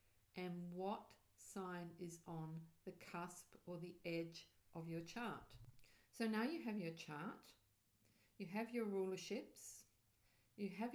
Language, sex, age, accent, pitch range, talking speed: English, female, 50-69, Australian, 165-215 Hz, 135 wpm